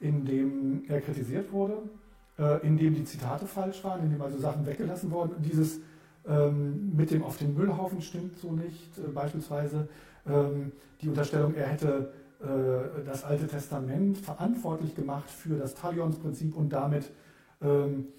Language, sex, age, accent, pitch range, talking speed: German, male, 40-59, German, 140-160 Hz, 160 wpm